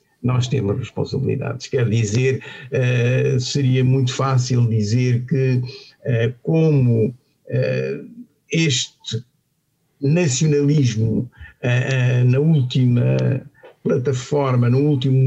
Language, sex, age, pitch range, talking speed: Portuguese, male, 50-69, 125-145 Hz, 70 wpm